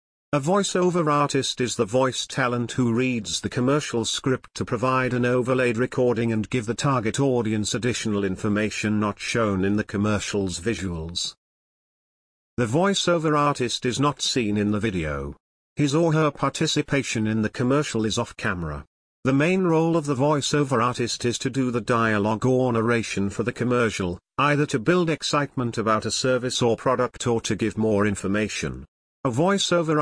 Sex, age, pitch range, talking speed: male, 50-69, 105-140 Hz, 165 wpm